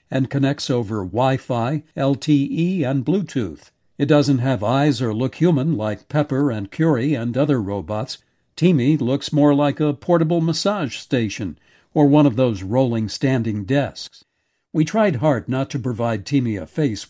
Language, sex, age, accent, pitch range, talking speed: English, male, 60-79, American, 125-150 Hz, 160 wpm